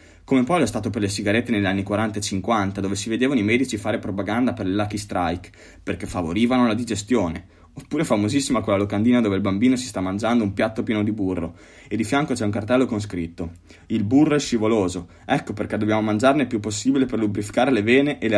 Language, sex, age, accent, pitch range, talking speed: Italian, male, 20-39, native, 95-120 Hz, 220 wpm